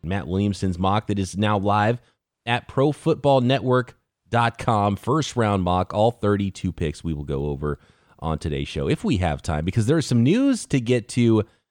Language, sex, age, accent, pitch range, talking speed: English, male, 30-49, American, 90-130 Hz, 175 wpm